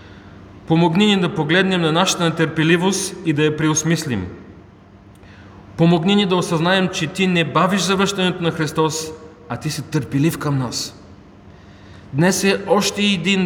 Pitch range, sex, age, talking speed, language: 120-170 Hz, male, 40-59, 145 wpm, Bulgarian